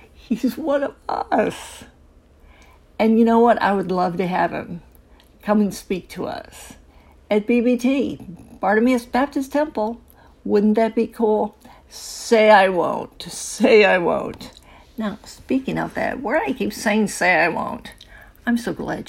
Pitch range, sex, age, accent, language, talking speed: 185-235 Hz, female, 50-69, American, English, 150 wpm